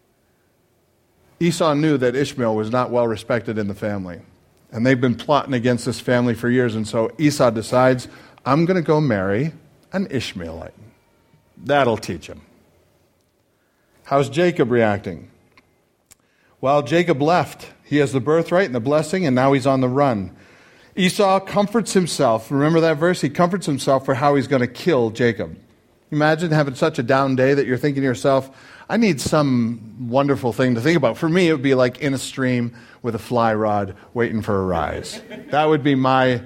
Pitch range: 120-160 Hz